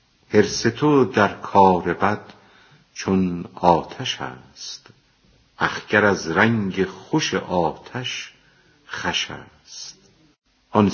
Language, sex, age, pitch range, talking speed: Persian, female, 50-69, 85-110 Hz, 90 wpm